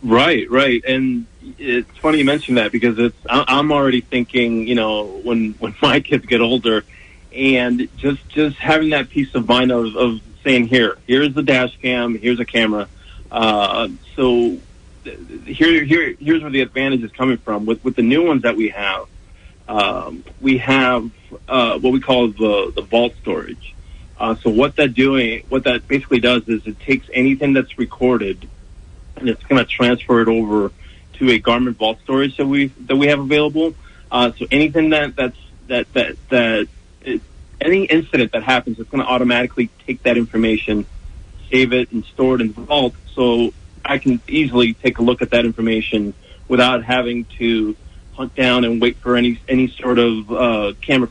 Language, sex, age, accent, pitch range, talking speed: English, male, 30-49, American, 115-130 Hz, 180 wpm